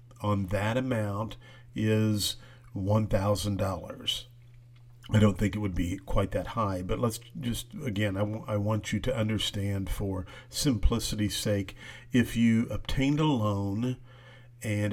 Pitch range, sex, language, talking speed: 105-125 Hz, male, English, 135 wpm